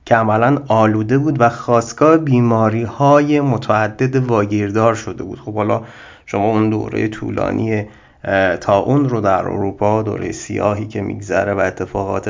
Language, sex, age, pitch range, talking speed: Persian, male, 30-49, 100-125 Hz, 135 wpm